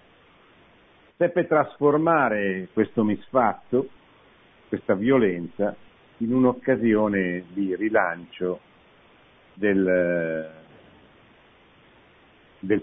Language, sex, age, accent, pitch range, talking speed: Italian, male, 60-79, native, 95-125 Hz, 55 wpm